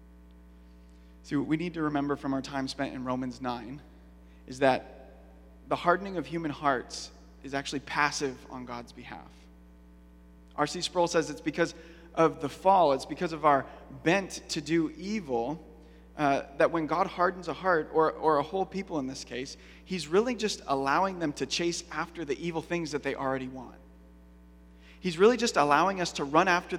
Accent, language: American, English